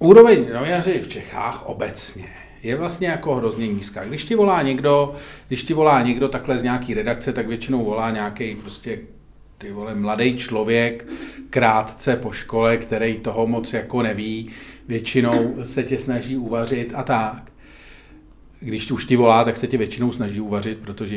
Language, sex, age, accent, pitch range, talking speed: Czech, male, 40-59, native, 110-140 Hz, 160 wpm